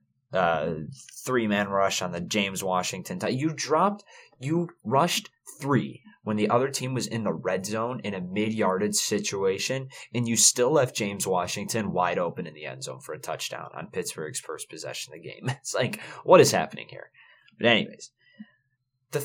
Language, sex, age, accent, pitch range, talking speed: English, male, 20-39, American, 105-145 Hz, 175 wpm